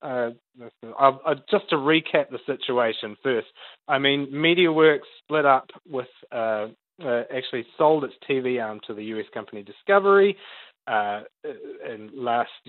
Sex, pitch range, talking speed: male, 115-150 Hz, 145 wpm